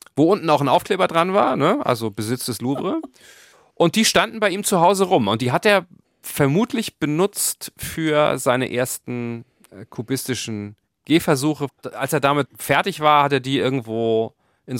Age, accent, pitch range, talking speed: 40-59, German, 120-155 Hz, 160 wpm